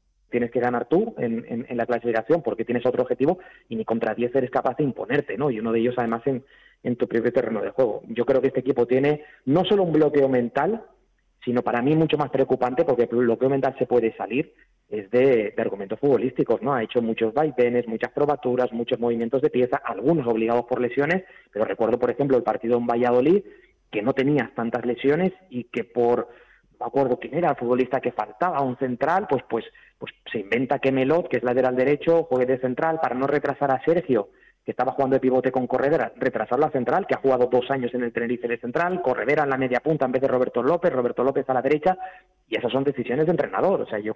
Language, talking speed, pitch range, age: Spanish, 225 wpm, 120-140 Hz, 30-49